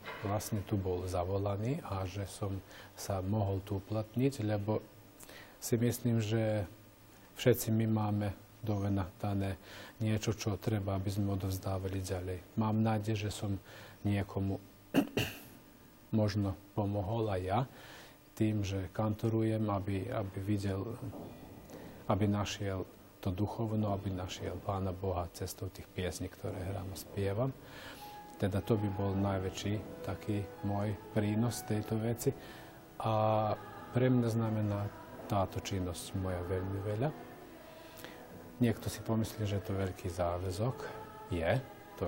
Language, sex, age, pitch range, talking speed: Slovak, male, 40-59, 95-110 Hz, 125 wpm